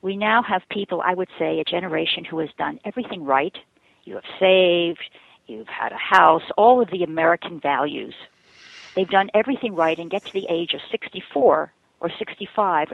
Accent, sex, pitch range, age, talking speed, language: American, female, 165-210 Hz, 50-69, 180 wpm, English